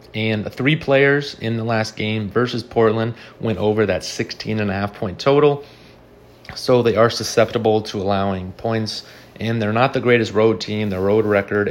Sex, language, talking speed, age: male, English, 165 wpm, 30-49